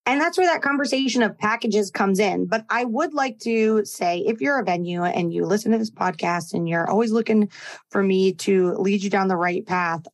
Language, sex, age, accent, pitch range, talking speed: English, female, 30-49, American, 185-230 Hz, 225 wpm